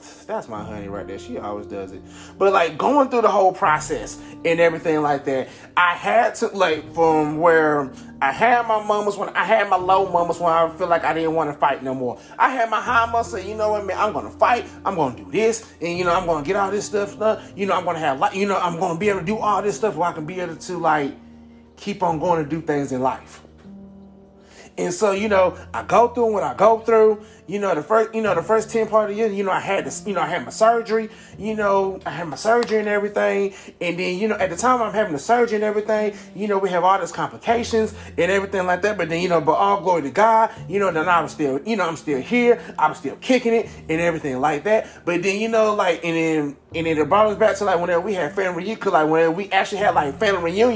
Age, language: 20-39, English